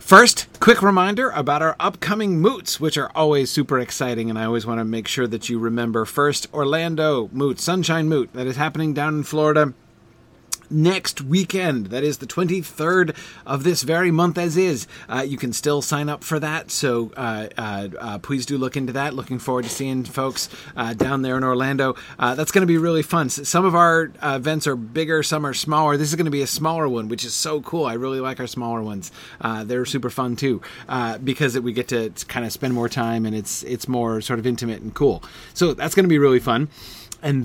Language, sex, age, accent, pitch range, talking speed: English, male, 30-49, American, 120-155 Hz, 225 wpm